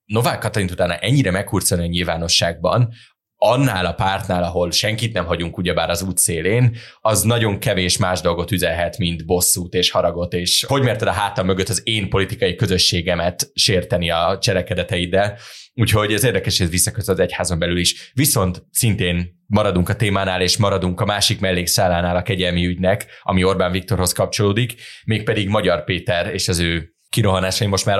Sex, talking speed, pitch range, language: male, 160 wpm, 90-110 Hz, Hungarian